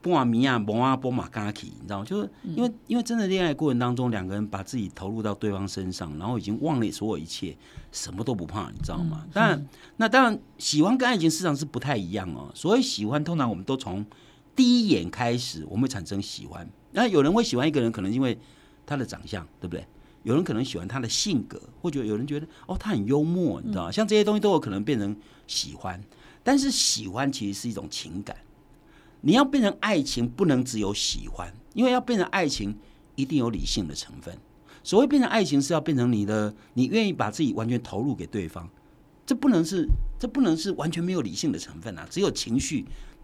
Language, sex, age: Chinese, male, 60-79